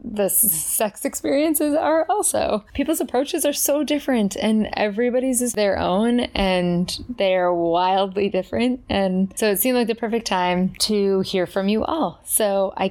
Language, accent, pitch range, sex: English, American, 175-235 Hz, female